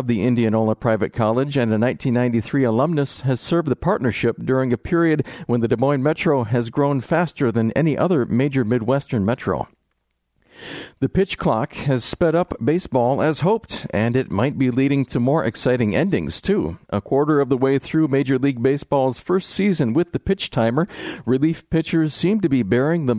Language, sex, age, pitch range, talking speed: English, male, 50-69, 115-155 Hz, 185 wpm